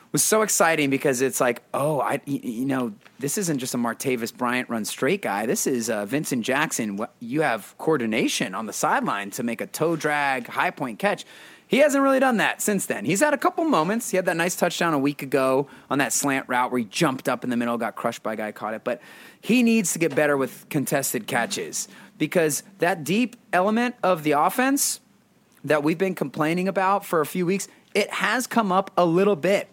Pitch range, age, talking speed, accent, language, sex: 135-200 Hz, 30-49, 225 wpm, American, English, male